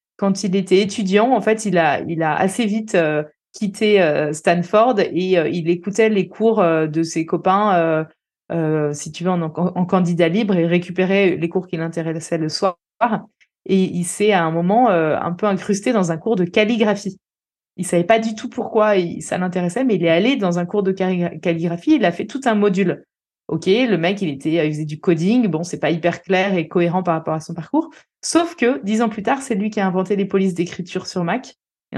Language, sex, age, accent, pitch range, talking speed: French, female, 20-39, French, 165-205 Hz, 220 wpm